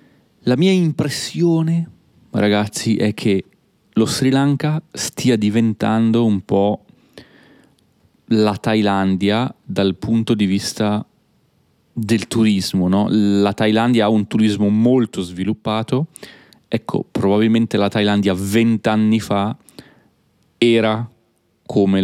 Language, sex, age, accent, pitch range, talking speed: Italian, male, 30-49, native, 95-115 Hz, 100 wpm